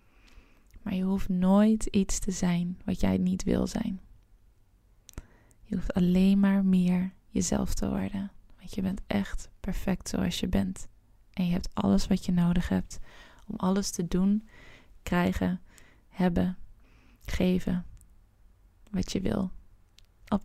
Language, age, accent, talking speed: Dutch, 20-39, Dutch, 140 wpm